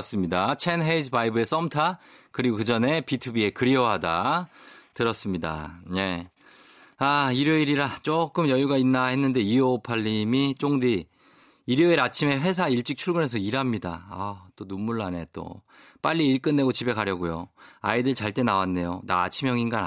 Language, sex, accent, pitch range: Korean, male, native, 100-150 Hz